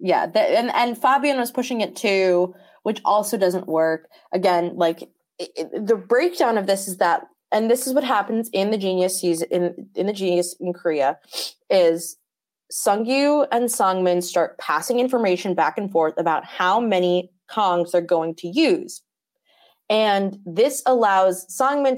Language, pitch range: English, 175-250 Hz